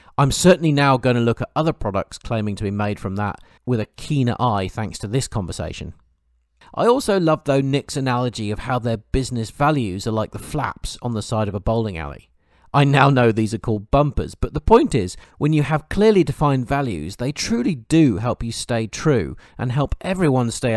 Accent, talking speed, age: British, 210 wpm, 40-59